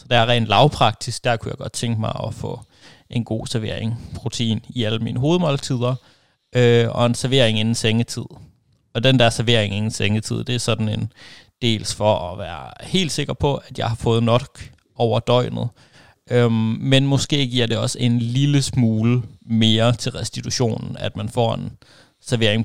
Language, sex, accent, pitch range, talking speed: Danish, male, native, 110-125 Hz, 180 wpm